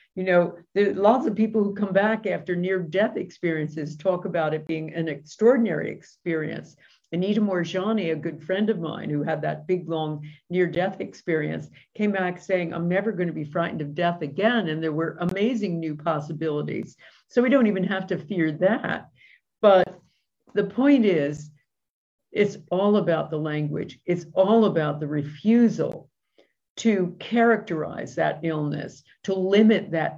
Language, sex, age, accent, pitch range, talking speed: English, female, 50-69, American, 160-200 Hz, 160 wpm